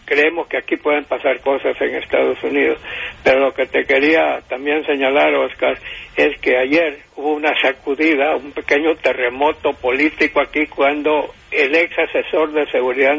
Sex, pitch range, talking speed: male, 140-165 Hz, 155 wpm